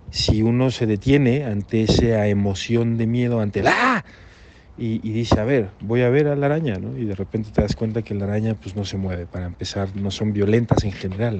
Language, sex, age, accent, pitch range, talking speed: English, male, 40-59, Mexican, 95-110 Hz, 230 wpm